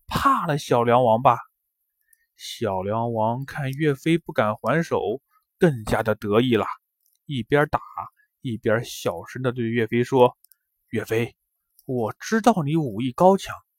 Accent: native